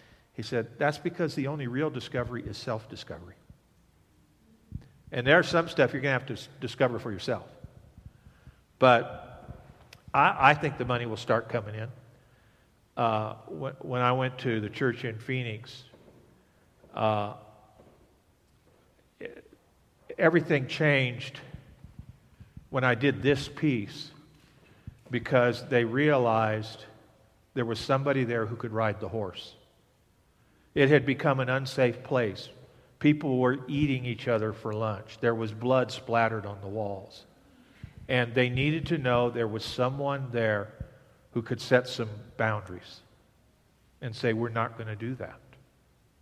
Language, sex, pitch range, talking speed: English, male, 110-130 Hz, 135 wpm